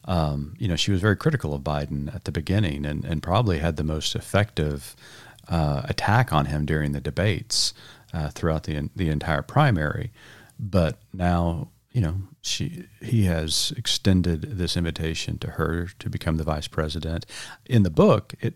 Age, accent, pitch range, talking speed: 40-59, American, 80-115 Hz, 175 wpm